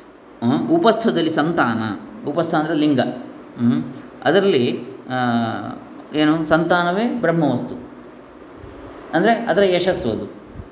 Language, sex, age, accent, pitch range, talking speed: Kannada, male, 20-39, native, 120-175 Hz, 65 wpm